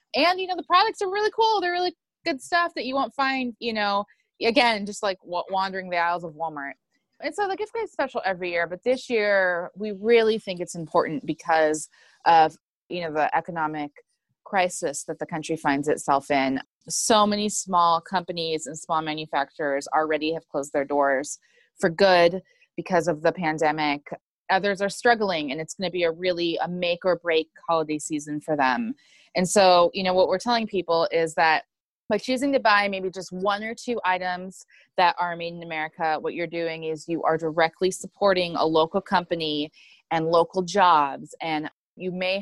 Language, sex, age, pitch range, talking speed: English, female, 20-39, 160-220 Hz, 190 wpm